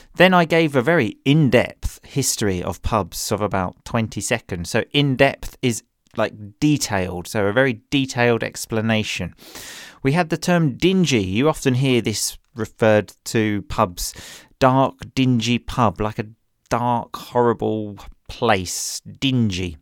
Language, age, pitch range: English, 30-49, 110-140 Hz